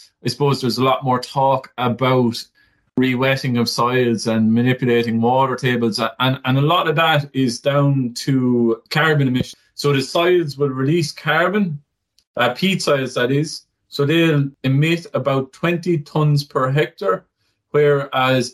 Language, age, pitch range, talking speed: English, 30-49, 120-145 Hz, 150 wpm